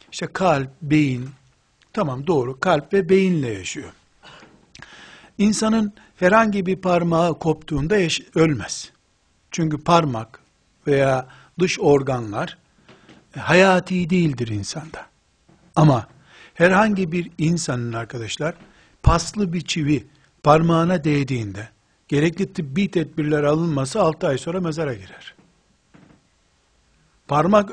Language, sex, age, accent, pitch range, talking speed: Turkish, male, 60-79, native, 135-185 Hz, 95 wpm